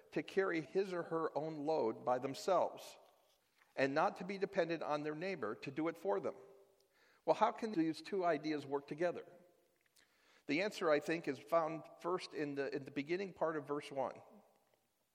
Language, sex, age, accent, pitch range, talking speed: English, male, 50-69, American, 135-190 Hz, 180 wpm